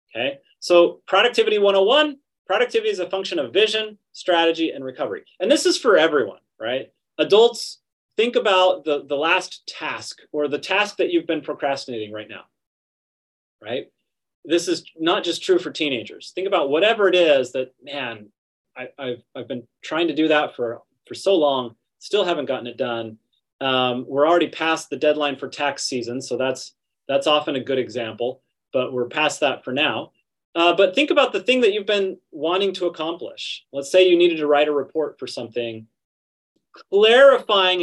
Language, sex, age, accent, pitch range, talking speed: English, male, 30-49, American, 135-205 Hz, 180 wpm